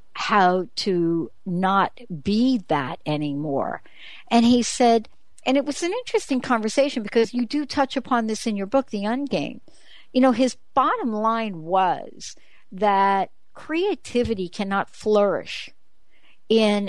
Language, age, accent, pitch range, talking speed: English, 60-79, American, 185-245 Hz, 130 wpm